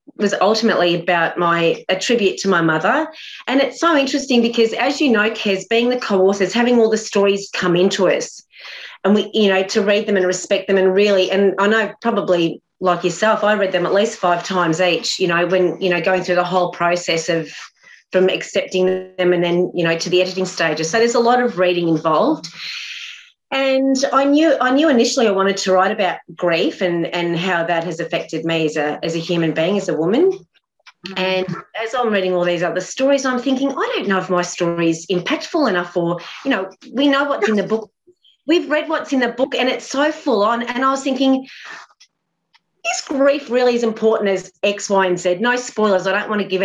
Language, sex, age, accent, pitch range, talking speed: English, female, 30-49, Australian, 180-250 Hz, 220 wpm